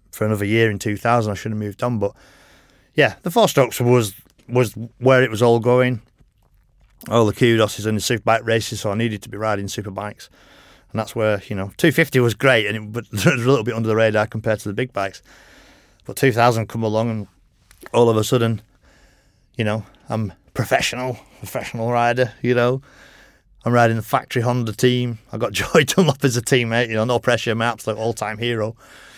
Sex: male